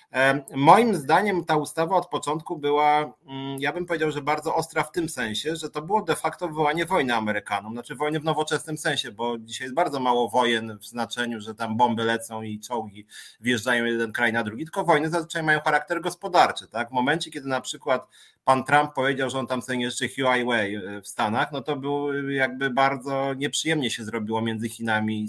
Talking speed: 195 wpm